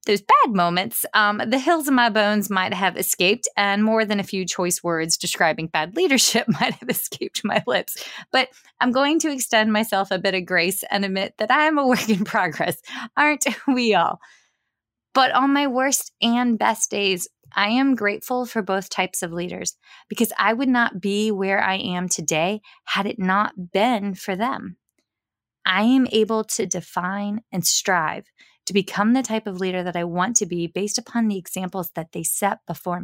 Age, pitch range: 20-39, 180-230 Hz